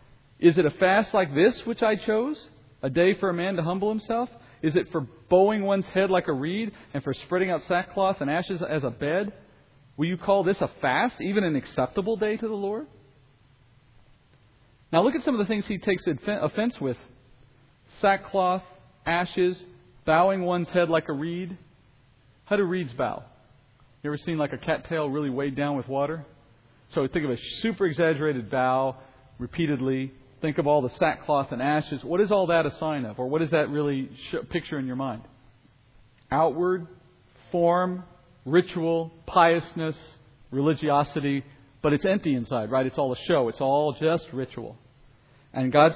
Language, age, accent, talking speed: English, 40-59, American, 175 wpm